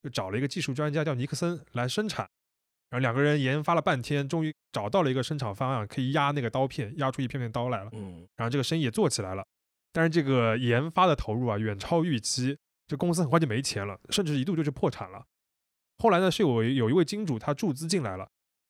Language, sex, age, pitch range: Chinese, male, 20-39, 115-165 Hz